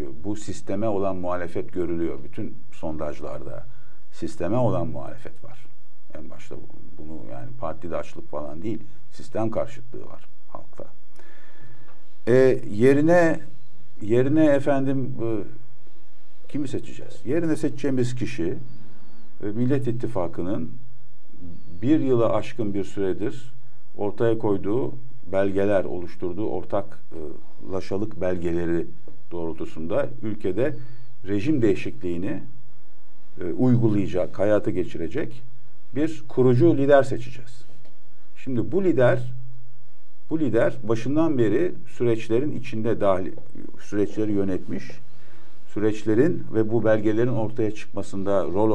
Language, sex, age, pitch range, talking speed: Turkish, male, 50-69, 90-125 Hz, 95 wpm